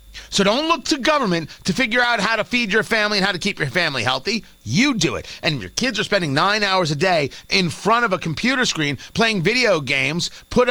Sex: male